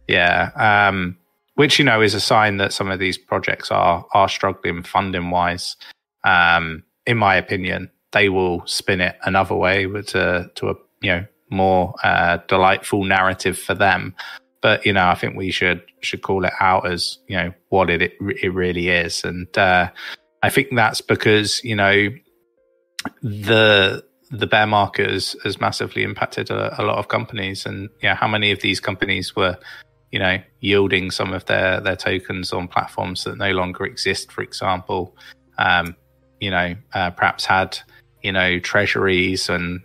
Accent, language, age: British, English, 20-39